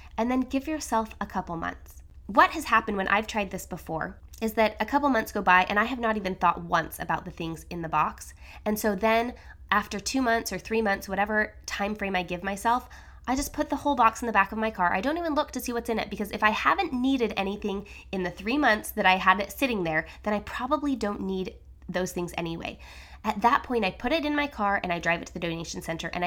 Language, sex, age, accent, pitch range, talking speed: English, female, 20-39, American, 180-235 Hz, 260 wpm